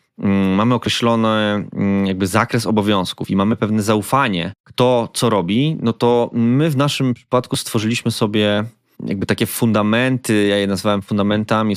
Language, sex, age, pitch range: Polish, male, 20-39, 100-120 Hz